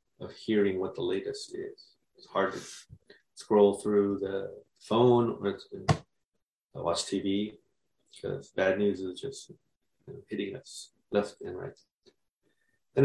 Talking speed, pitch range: 125 wpm, 105-130 Hz